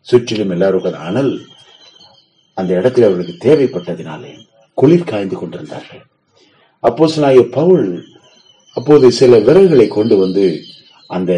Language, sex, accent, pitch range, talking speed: Tamil, male, native, 120-195 Hz, 90 wpm